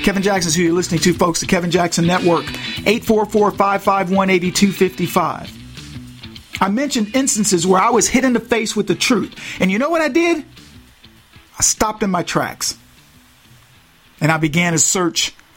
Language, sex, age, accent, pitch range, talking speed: English, male, 50-69, American, 175-245 Hz, 160 wpm